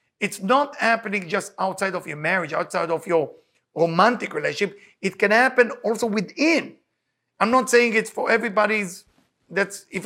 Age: 50-69